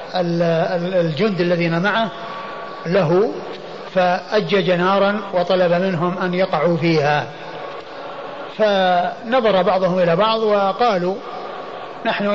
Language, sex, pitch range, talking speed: Arabic, male, 180-225 Hz, 85 wpm